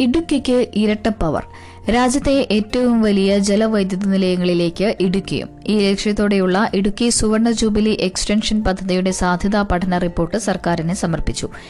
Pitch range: 180-210 Hz